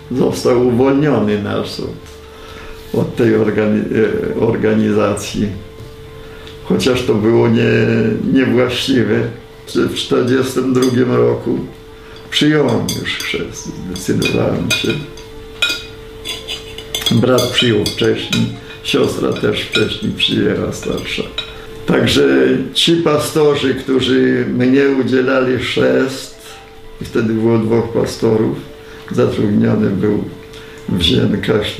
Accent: native